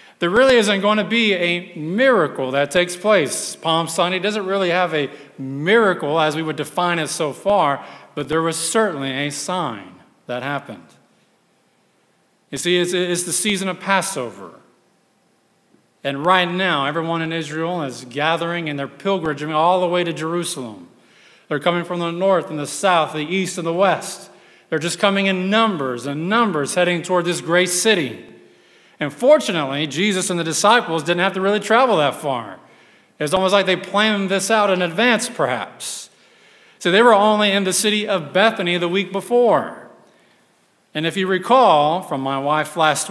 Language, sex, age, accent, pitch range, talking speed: English, male, 40-59, American, 150-195 Hz, 170 wpm